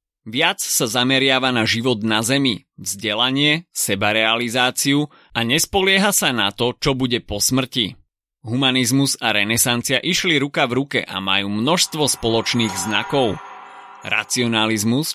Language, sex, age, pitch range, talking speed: Slovak, male, 30-49, 110-145 Hz, 125 wpm